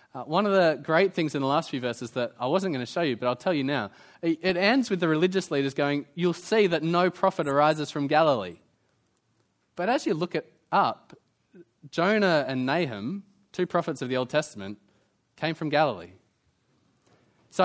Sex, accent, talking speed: male, Australian, 190 wpm